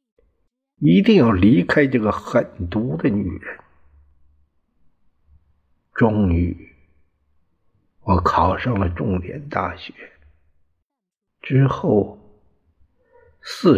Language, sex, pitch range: Chinese, male, 80-105 Hz